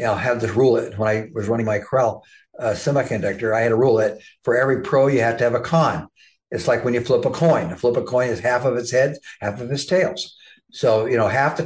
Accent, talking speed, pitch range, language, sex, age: American, 280 wpm, 115-150 Hz, English, male, 60-79